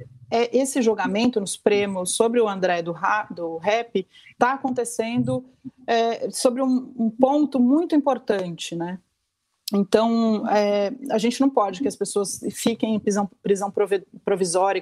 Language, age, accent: Portuguese, 30-49, Brazilian